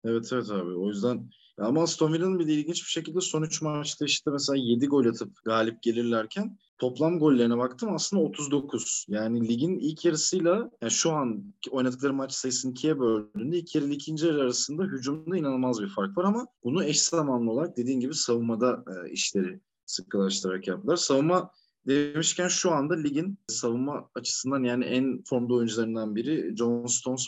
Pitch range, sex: 115-160 Hz, male